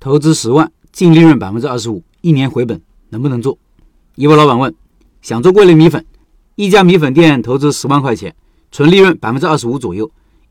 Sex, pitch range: male, 125-170 Hz